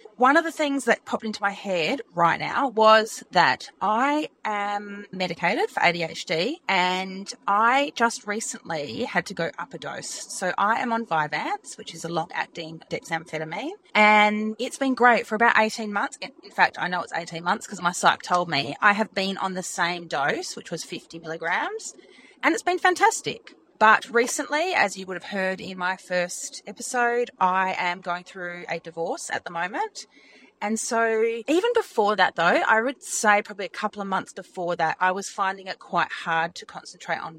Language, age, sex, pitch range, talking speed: English, 30-49, female, 175-240 Hz, 190 wpm